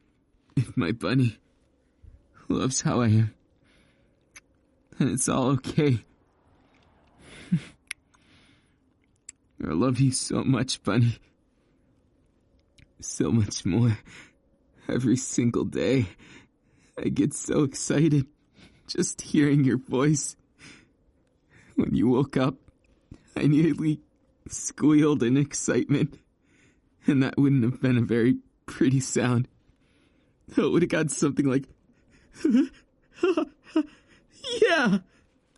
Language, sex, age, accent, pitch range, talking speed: English, male, 20-39, American, 120-150 Hz, 95 wpm